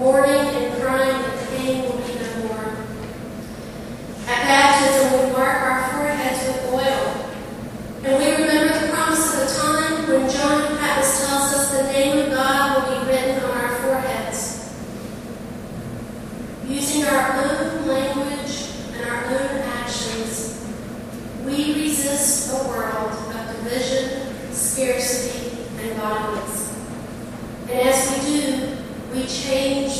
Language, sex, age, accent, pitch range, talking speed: English, female, 40-59, American, 240-270 Hz, 120 wpm